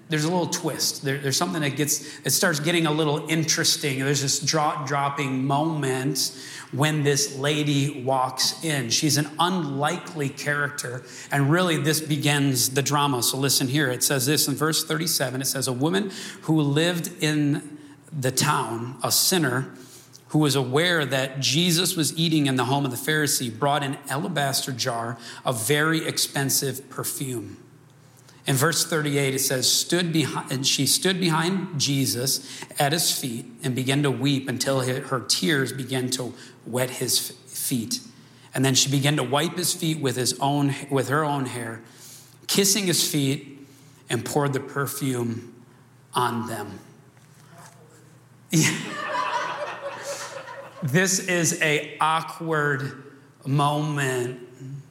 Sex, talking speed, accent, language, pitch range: male, 145 wpm, American, English, 130-155 Hz